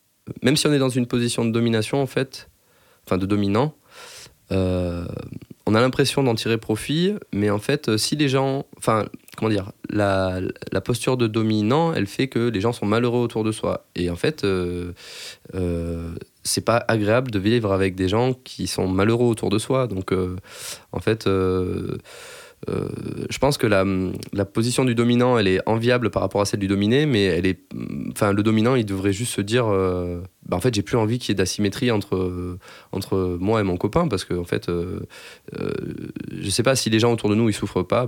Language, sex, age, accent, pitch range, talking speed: French, male, 20-39, French, 95-120 Hz, 210 wpm